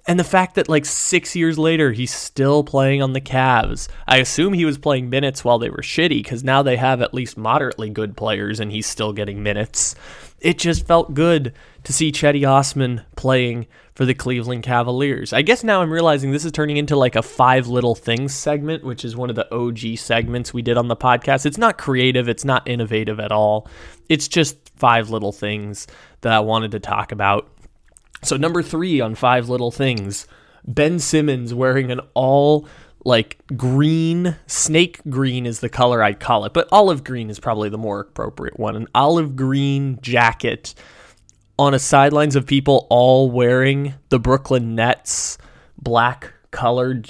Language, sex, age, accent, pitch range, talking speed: English, male, 20-39, American, 115-140 Hz, 185 wpm